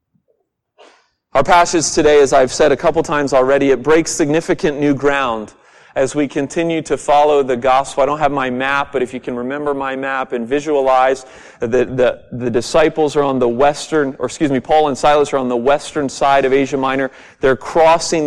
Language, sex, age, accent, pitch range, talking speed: English, male, 40-59, American, 135-170 Hz, 195 wpm